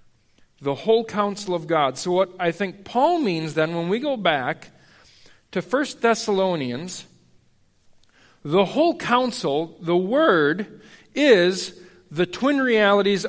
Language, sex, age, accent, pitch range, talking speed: English, male, 50-69, American, 155-215 Hz, 125 wpm